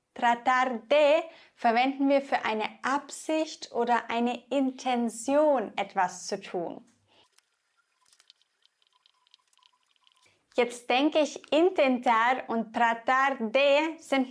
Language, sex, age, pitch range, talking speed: English, female, 20-39, 240-300 Hz, 90 wpm